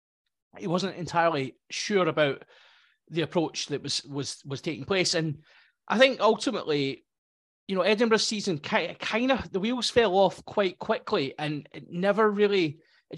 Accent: British